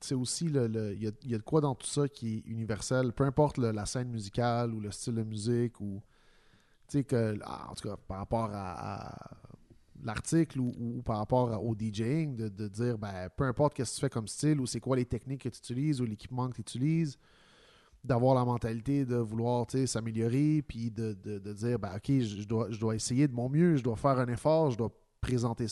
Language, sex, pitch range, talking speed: French, male, 105-130 Hz, 225 wpm